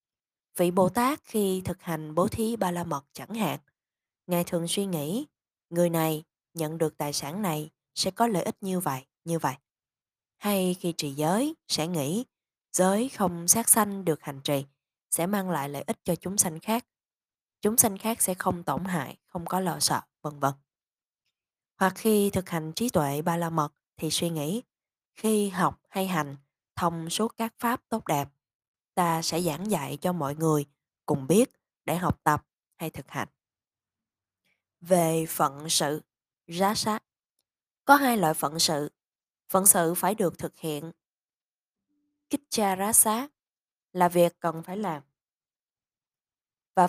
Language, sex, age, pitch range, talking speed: Vietnamese, female, 20-39, 155-205 Hz, 165 wpm